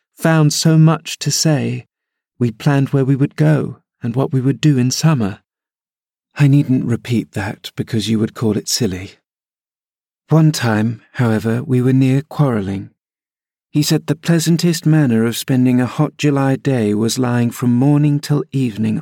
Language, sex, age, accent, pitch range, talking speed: English, male, 40-59, British, 115-135 Hz, 165 wpm